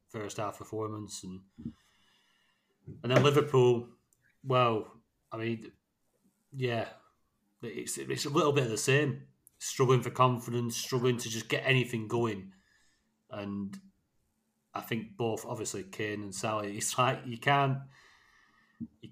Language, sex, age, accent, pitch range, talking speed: English, male, 30-49, British, 105-125 Hz, 130 wpm